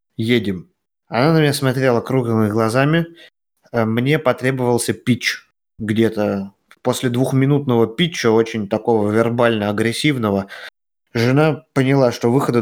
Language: Russian